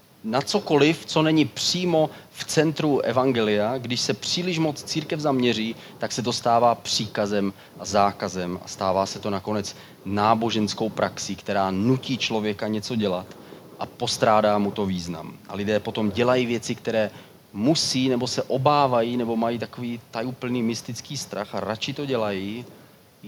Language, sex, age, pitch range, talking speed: Czech, male, 30-49, 100-130 Hz, 150 wpm